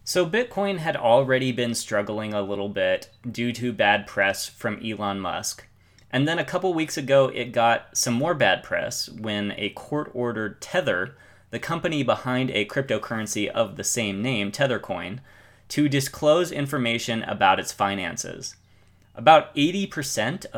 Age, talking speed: 30-49, 150 wpm